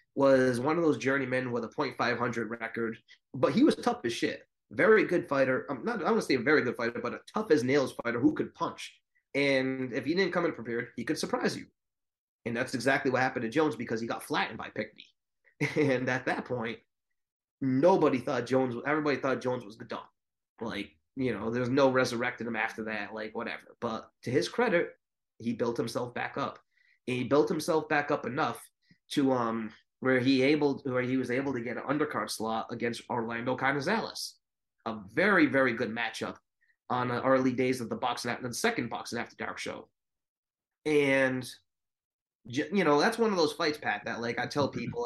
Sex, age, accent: male, 30-49, American